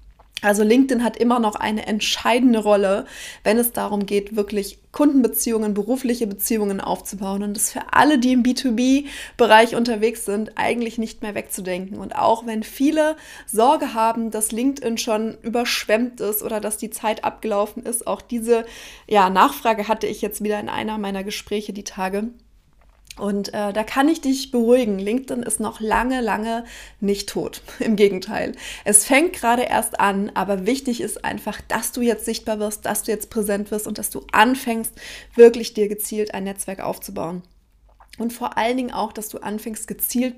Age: 30-49